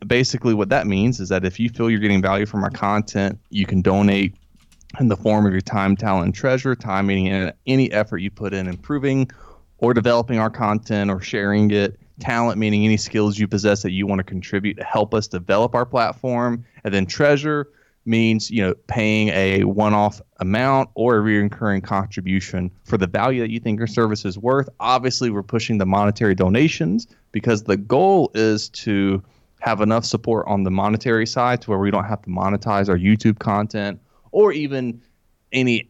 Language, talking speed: English, 190 wpm